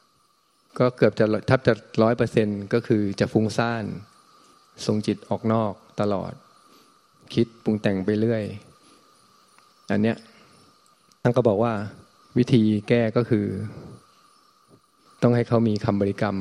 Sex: male